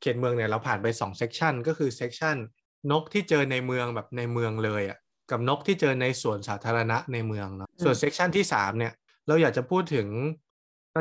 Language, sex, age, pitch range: Thai, male, 20-39, 115-155 Hz